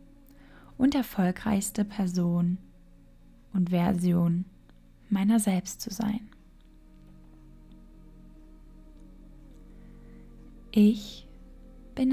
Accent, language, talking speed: German, German, 55 wpm